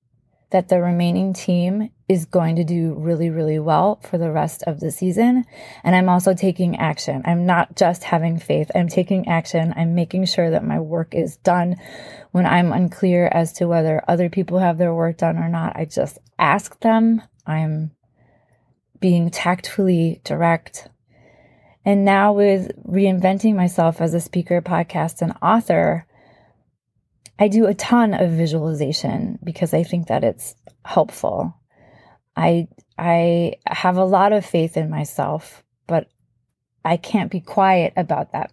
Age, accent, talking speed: 20-39, American, 155 wpm